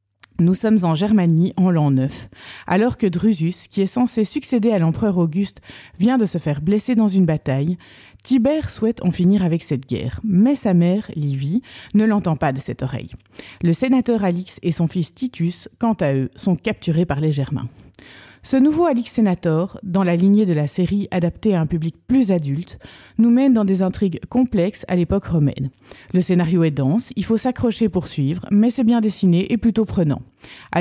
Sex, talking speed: female, 195 wpm